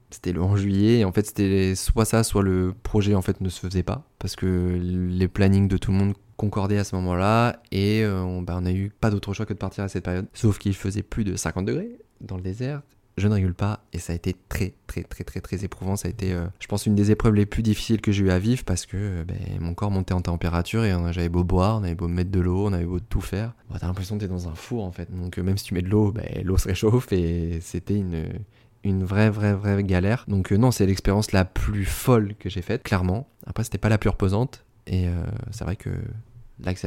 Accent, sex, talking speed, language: French, male, 275 wpm, French